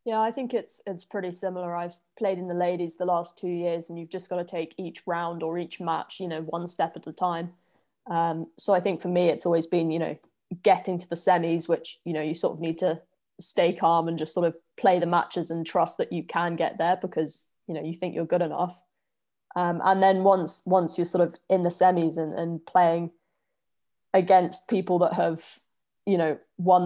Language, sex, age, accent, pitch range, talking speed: English, female, 20-39, British, 170-190 Hz, 230 wpm